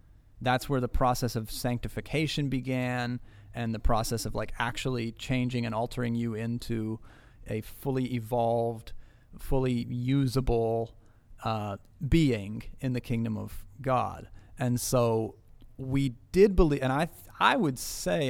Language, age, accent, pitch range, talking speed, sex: English, 30-49, American, 110-130 Hz, 130 wpm, male